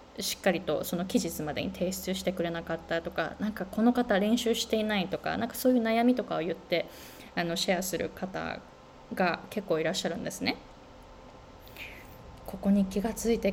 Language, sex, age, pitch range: Japanese, female, 20-39, 190-270 Hz